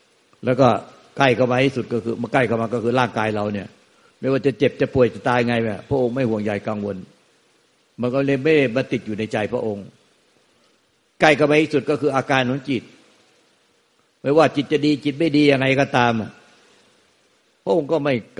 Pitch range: 115-140 Hz